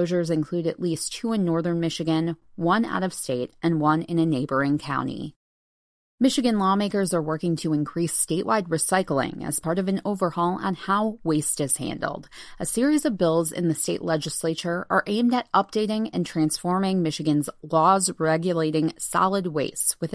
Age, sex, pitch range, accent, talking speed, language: 30-49, female, 155-205 Hz, American, 165 wpm, English